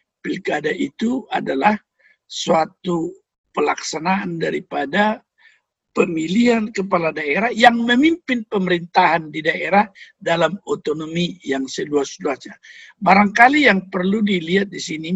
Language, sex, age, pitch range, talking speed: Indonesian, male, 60-79, 170-225 Hz, 95 wpm